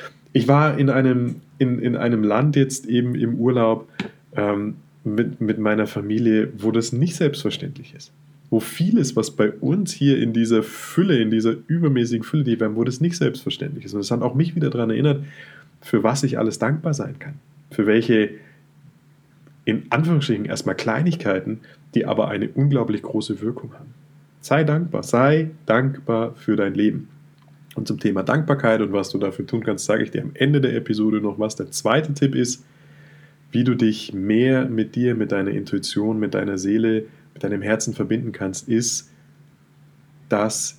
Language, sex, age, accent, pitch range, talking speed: German, male, 30-49, German, 110-145 Hz, 170 wpm